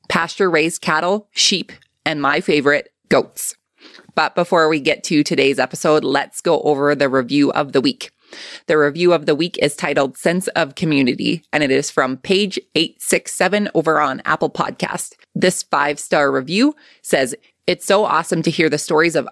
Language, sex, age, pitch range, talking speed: English, female, 20-39, 145-180 Hz, 170 wpm